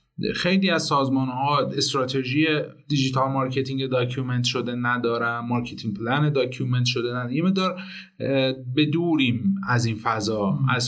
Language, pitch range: Persian, 130-165 Hz